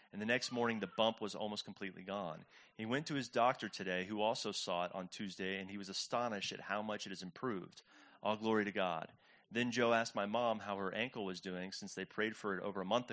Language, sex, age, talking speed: English, male, 30-49, 245 wpm